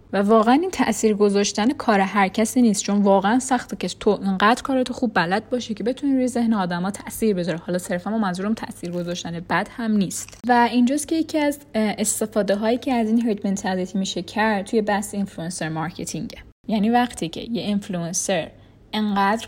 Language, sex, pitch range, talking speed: Persian, female, 185-225 Hz, 175 wpm